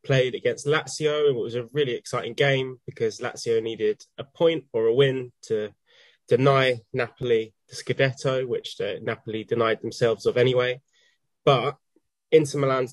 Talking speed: 155 wpm